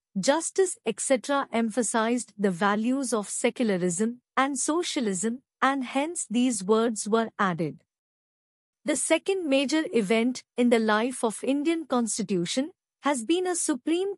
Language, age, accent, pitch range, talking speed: Telugu, 50-69, native, 225-300 Hz, 125 wpm